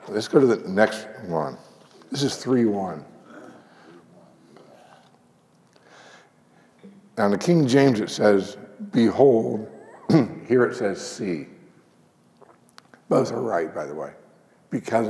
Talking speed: 115 wpm